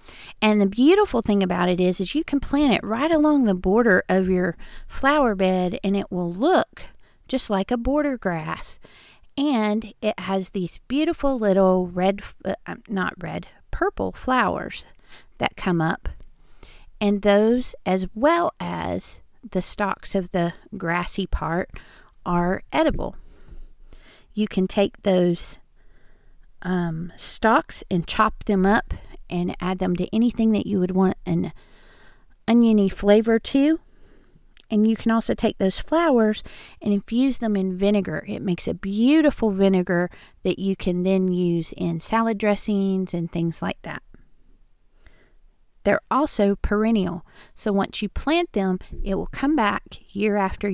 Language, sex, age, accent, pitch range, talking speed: English, female, 40-59, American, 185-225 Hz, 145 wpm